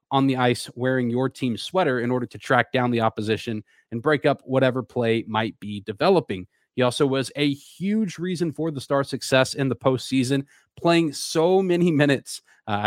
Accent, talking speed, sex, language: American, 185 wpm, male, English